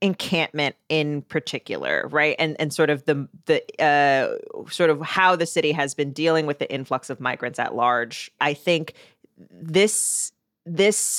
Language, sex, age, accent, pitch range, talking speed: English, female, 30-49, American, 145-185 Hz, 160 wpm